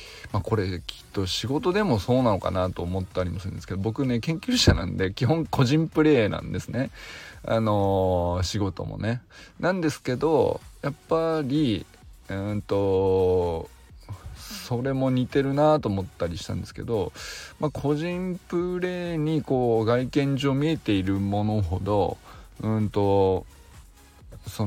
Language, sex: Japanese, male